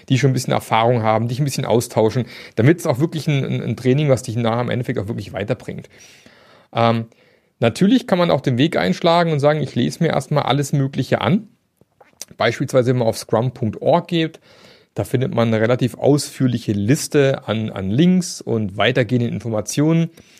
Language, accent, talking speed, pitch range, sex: German, German, 180 wpm, 115-150 Hz, male